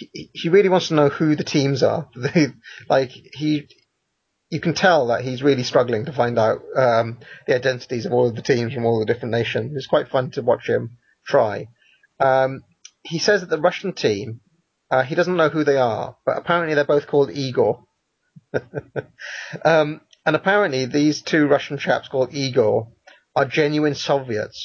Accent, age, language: British, 30-49, English